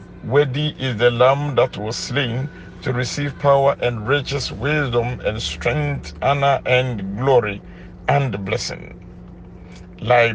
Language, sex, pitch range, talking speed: English, male, 90-135 Hz, 120 wpm